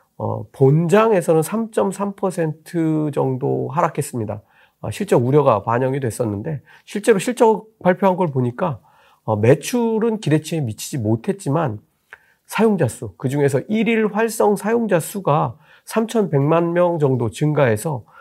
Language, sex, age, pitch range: Korean, male, 40-59, 120-185 Hz